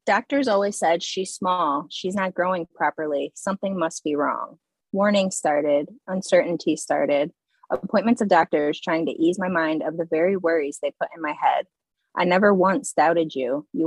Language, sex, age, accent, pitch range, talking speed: English, female, 20-39, American, 155-195 Hz, 175 wpm